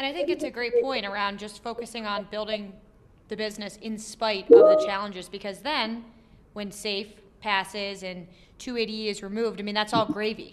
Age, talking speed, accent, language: 20-39, 190 wpm, American, English